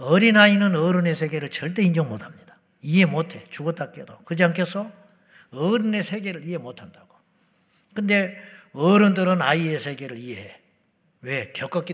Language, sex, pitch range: Korean, male, 180-285 Hz